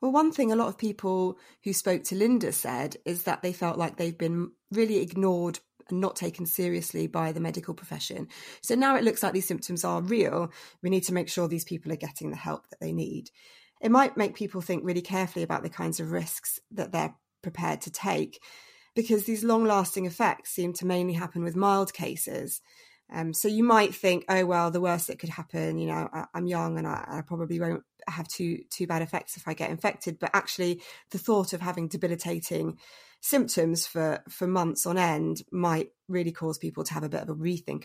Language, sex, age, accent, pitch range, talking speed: English, female, 20-39, British, 160-195 Hz, 215 wpm